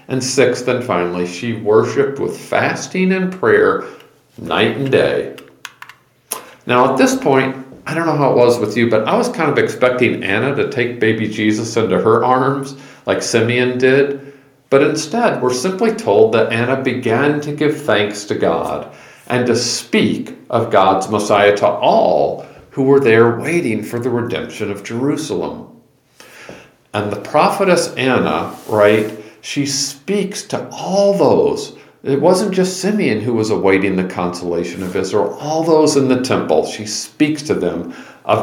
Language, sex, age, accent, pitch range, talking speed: English, male, 50-69, American, 110-155 Hz, 160 wpm